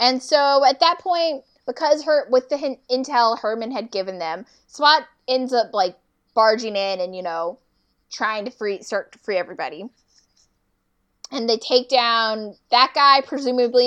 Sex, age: female, 10-29